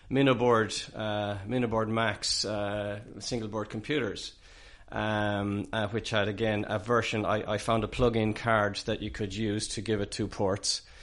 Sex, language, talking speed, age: male, English, 160 wpm, 30-49